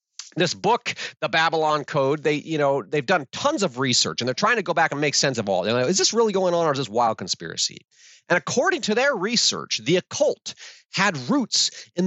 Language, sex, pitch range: English, male, 140-195 Hz